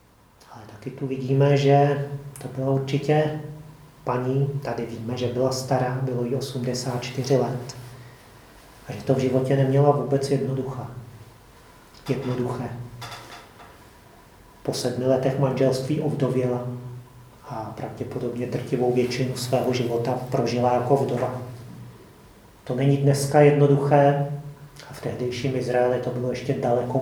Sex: male